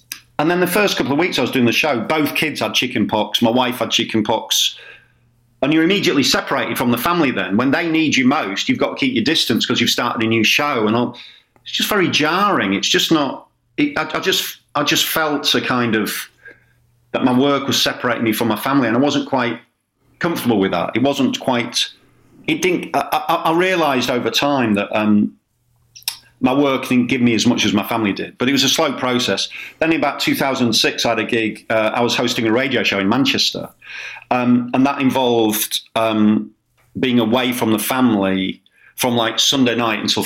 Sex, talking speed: male, 215 wpm